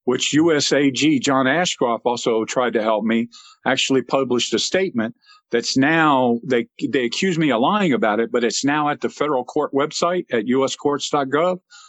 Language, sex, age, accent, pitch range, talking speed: English, male, 50-69, American, 130-185 Hz, 165 wpm